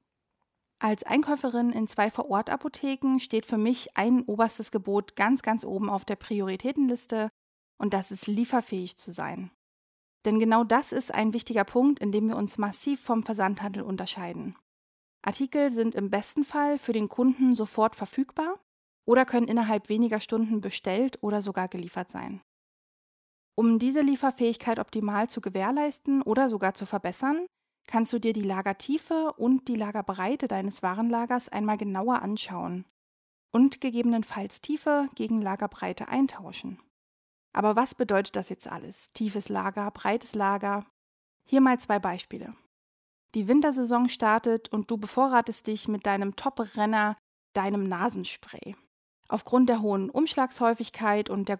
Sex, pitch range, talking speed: female, 200-250 Hz, 140 wpm